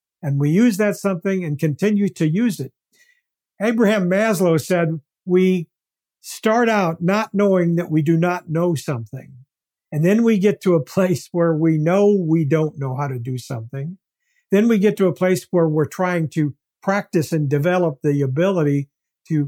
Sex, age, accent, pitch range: male, 60-79, American, 155-195 Hz